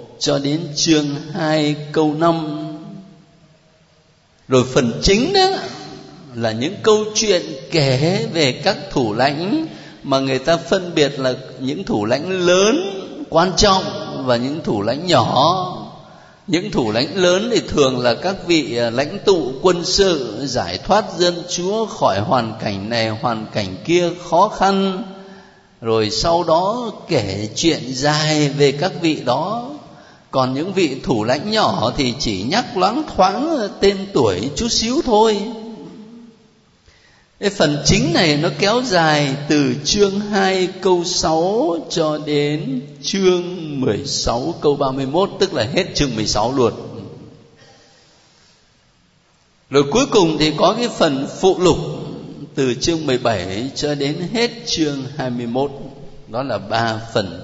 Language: Vietnamese